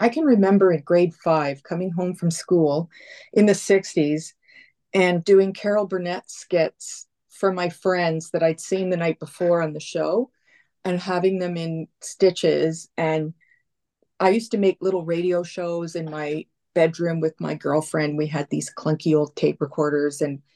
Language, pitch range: English, 155-190 Hz